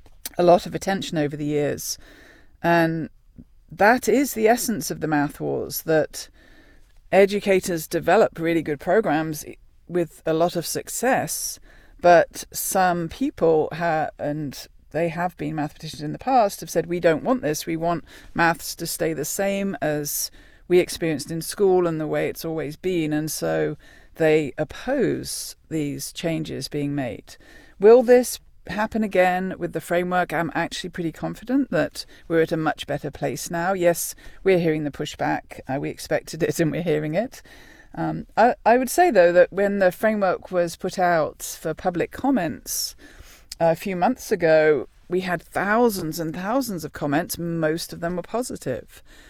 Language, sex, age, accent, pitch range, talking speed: English, female, 40-59, British, 155-185 Hz, 165 wpm